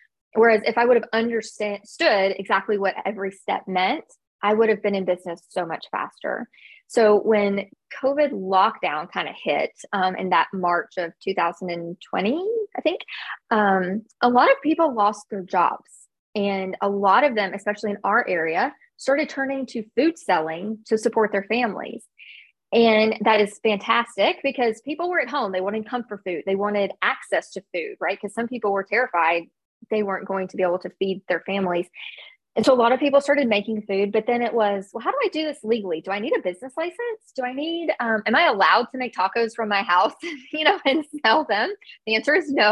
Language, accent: English, American